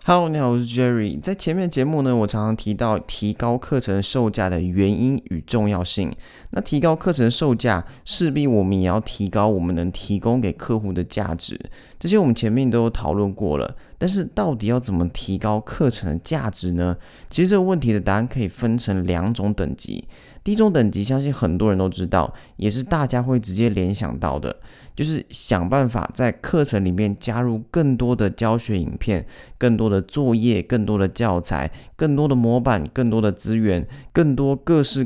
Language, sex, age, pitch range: Chinese, male, 20-39, 100-130 Hz